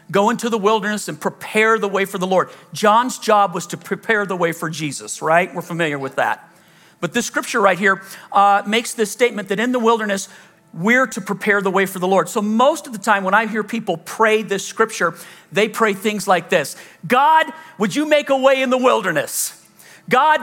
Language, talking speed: English, 215 wpm